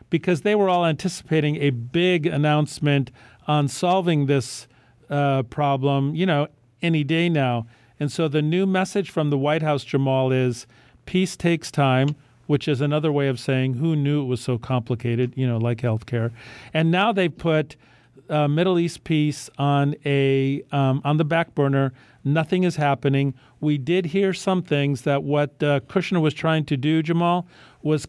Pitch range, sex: 130-160 Hz, male